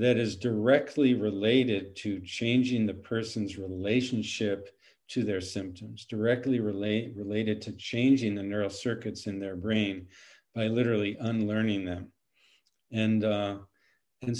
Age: 50-69